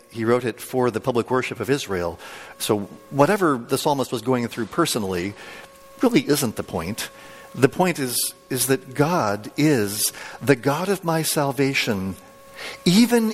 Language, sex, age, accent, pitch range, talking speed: English, male, 50-69, American, 120-155 Hz, 155 wpm